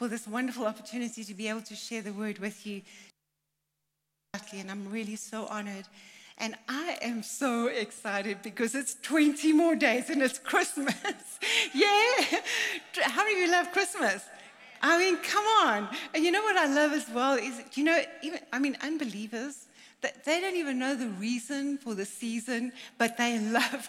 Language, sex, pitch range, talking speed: English, female, 220-285 Hz, 170 wpm